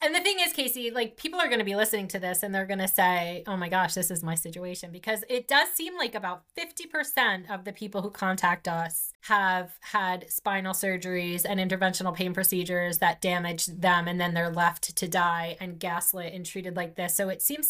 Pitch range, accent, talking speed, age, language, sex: 185-235 Hz, American, 220 wpm, 20-39, English, female